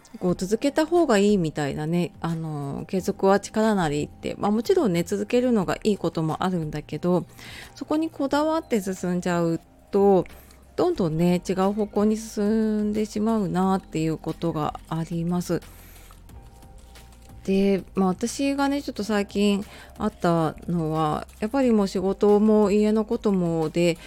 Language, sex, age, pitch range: Japanese, female, 30-49, 160-210 Hz